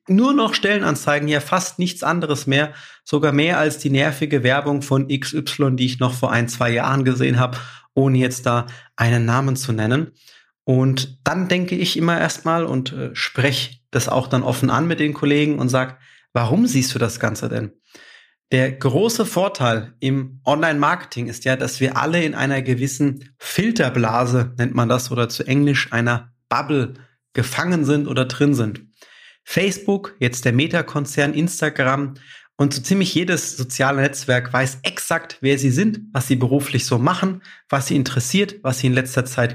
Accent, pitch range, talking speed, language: German, 125-150 Hz, 170 wpm, German